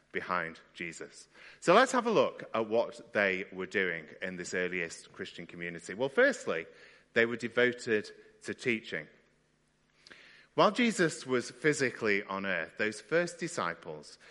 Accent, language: British, English